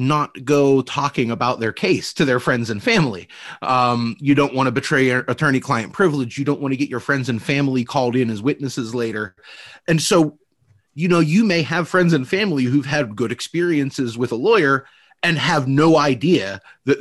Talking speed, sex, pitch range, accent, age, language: 200 wpm, male, 125-160 Hz, American, 30-49, English